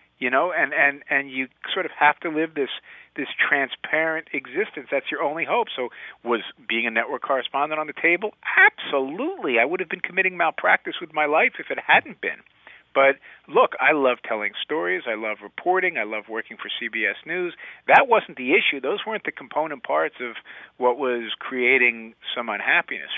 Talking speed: 185 wpm